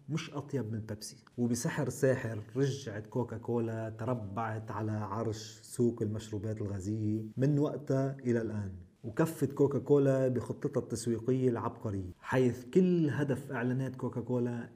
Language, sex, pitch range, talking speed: Arabic, male, 115-130 Hz, 115 wpm